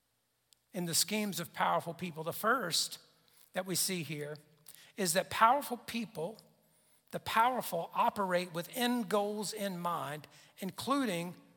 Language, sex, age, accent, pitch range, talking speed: English, male, 50-69, American, 170-230 Hz, 130 wpm